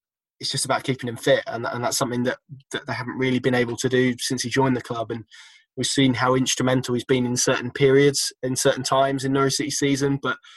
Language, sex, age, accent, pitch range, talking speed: English, male, 20-39, British, 120-135 Hz, 240 wpm